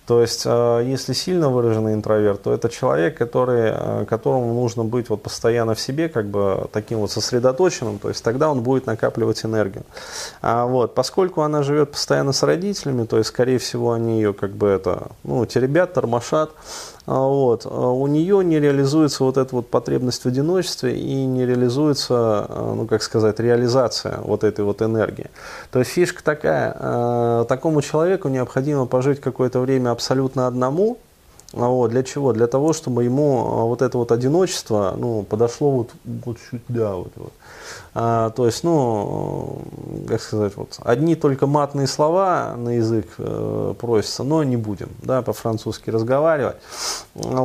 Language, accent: Russian, native